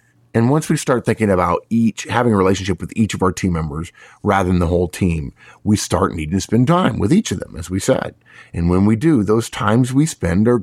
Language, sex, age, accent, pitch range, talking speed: English, male, 50-69, American, 90-120 Hz, 245 wpm